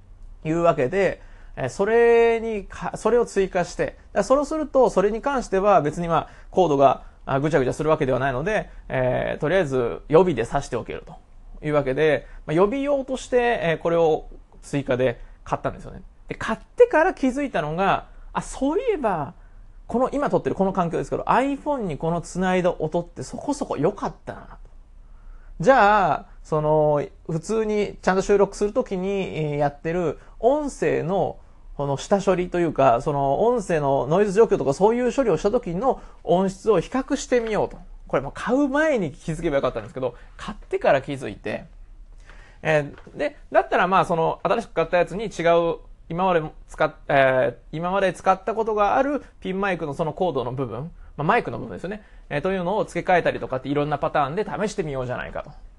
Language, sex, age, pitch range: Japanese, male, 20-39, 155-225 Hz